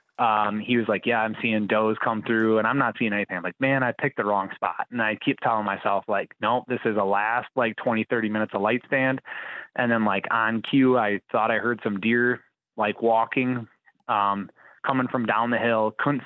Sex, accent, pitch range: male, American, 100-120 Hz